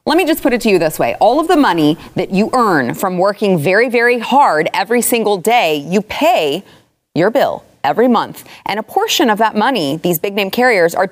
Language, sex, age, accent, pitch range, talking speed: English, female, 30-49, American, 175-225 Hz, 215 wpm